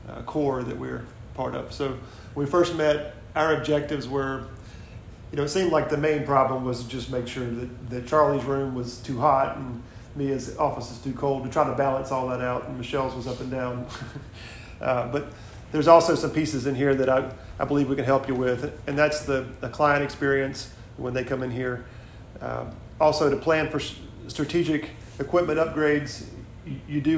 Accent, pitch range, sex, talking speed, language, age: American, 120-145 Hz, male, 205 wpm, English, 40-59